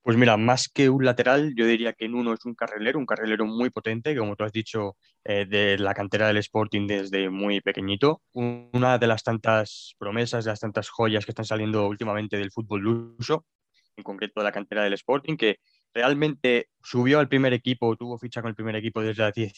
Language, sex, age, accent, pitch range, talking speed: Spanish, male, 20-39, Spanish, 105-120 Hz, 210 wpm